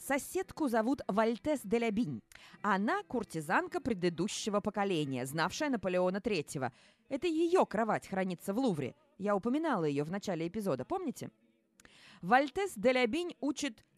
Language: Russian